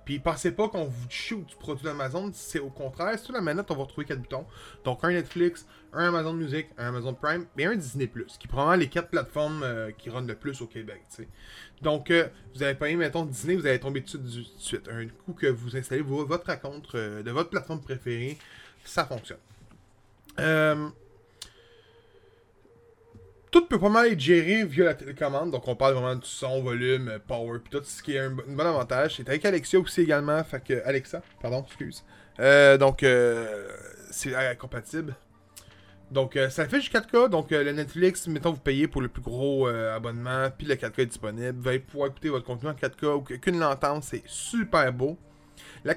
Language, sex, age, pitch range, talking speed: French, male, 20-39, 125-170 Hz, 200 wpm